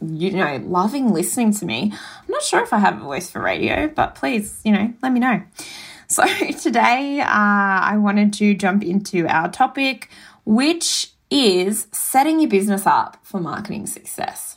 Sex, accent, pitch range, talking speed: female, Australian, 185-255 Hz, 175 wpm